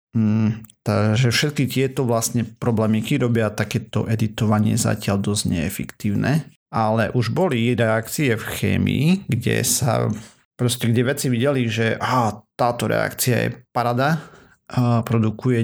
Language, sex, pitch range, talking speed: Slovak, male, 110-125 Hz, 125 wpm